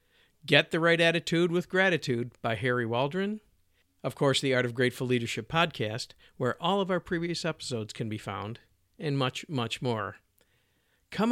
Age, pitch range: 50-69, 110-155 Hz